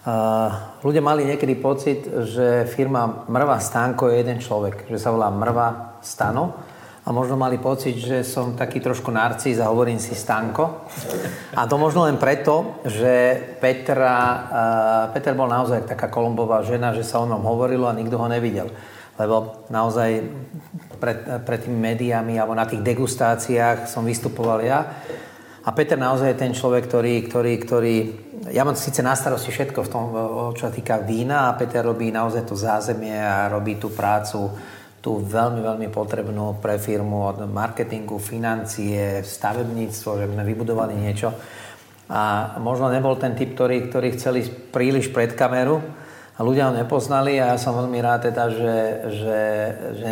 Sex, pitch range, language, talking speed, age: male, 110-125 Hz, Slovak, 160 wpm, 30-49